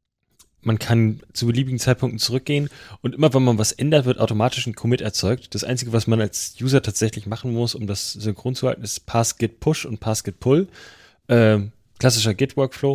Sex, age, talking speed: male, 10-29, 175 wpm